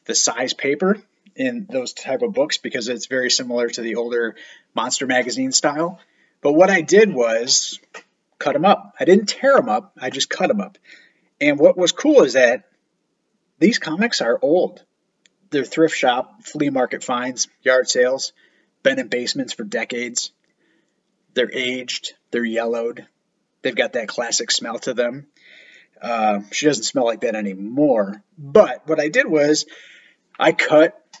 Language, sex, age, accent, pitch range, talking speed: English, male, 30-49, American, 115-170 Hz, 160 wpm